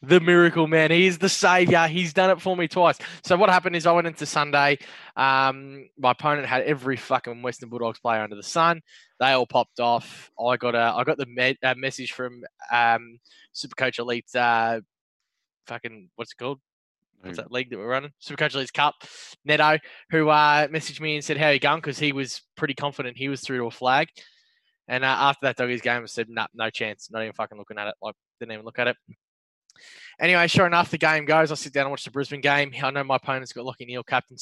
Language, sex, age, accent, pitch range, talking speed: English, male, 10-29, Australian, 120-150 Hz, 230 wpm